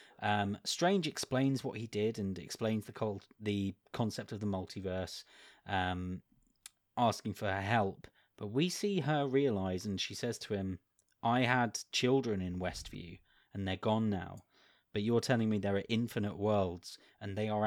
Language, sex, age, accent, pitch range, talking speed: English, male, 20-39, British, 100-120 Hz, 170 wpm